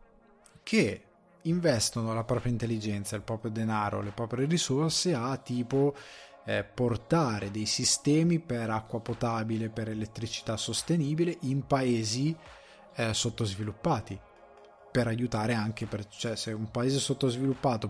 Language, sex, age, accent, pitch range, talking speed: Italian, male, 20-39, native, 115-130 Hz, 120 wpm